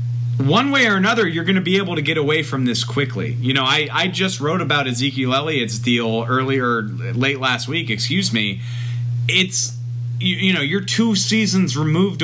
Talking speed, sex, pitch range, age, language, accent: 190 wpm, male, 120-160 Hz, 40-59, English, American